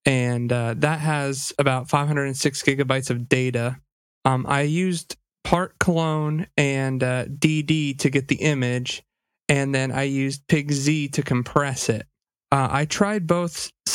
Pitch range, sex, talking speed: 130-155 Hz, male, 140 wpm